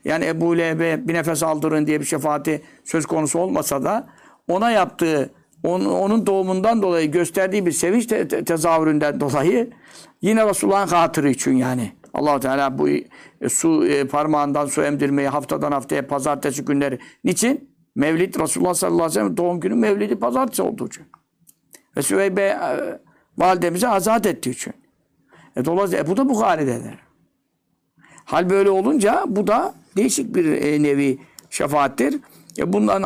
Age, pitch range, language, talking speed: 60-79, 150-195 Hz, Turkish, 145 wpm